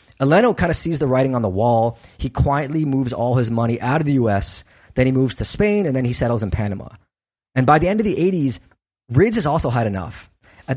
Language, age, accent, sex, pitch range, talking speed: English, 20-39, American, male, 105-145 Hz, 240 wpm